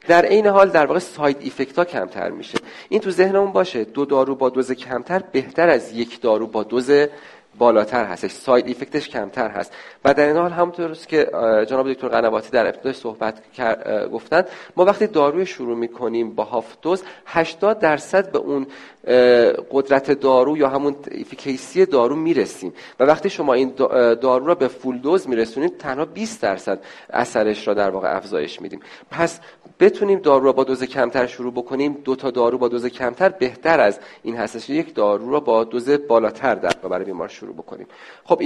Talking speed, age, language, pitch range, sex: 175 wpm, 40-59, Persian, 120-155 Hz, male